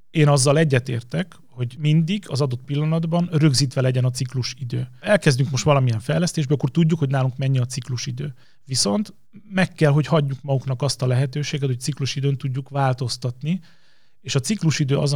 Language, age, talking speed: Hungarian, 30-49, 165 wpm